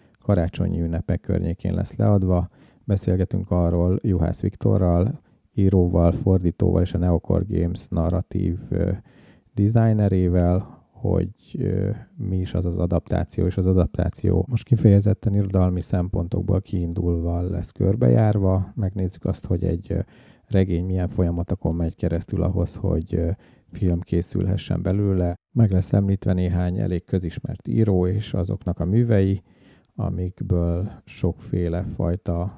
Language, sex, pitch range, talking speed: Hungarian, male, 90-100 Hz, 110 wpm